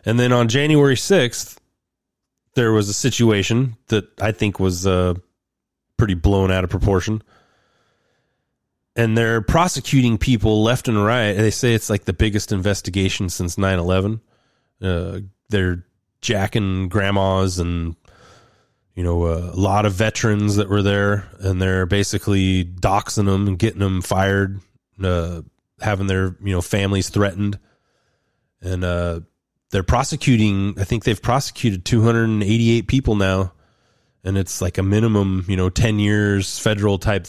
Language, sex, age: English, male, 30-49